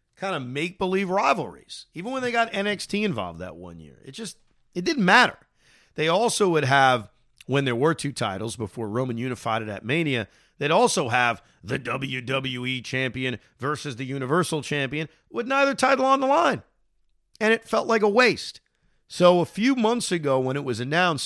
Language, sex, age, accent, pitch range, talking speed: English, male, 40-59, American, 125-190 Hz, 180 wpm